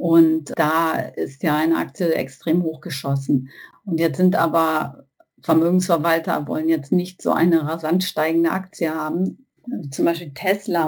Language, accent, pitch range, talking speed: German, German, 155-180 Hz, 140 wpm